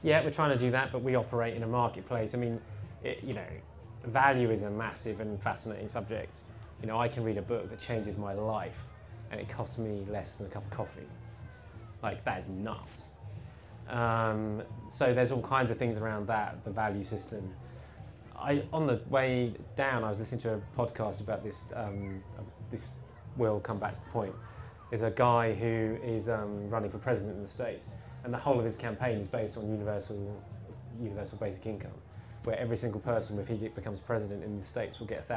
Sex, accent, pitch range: male, British, 105-115 Hz